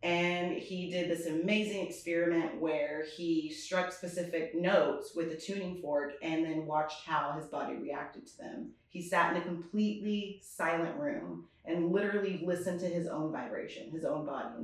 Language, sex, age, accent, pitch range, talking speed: English, female, 30-49, American, 160-180 Hz, 170 wpm